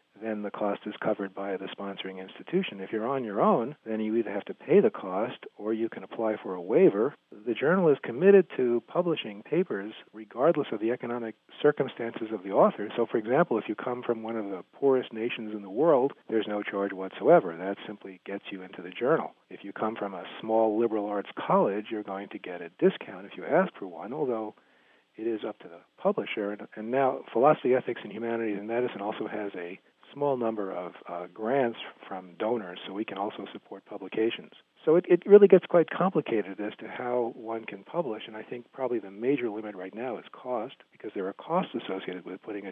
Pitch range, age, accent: 105-130 Hz, 40-59, American